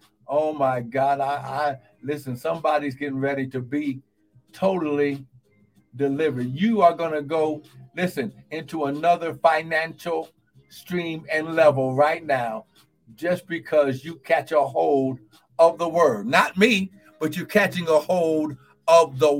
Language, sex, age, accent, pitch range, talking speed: English, male, 60-79, American, 140-205 Hz, 140 wpm